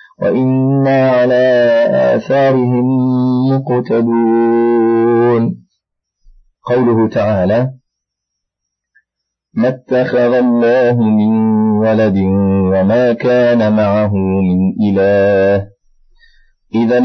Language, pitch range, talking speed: Arabic, 100-125 Hz, 60 wpm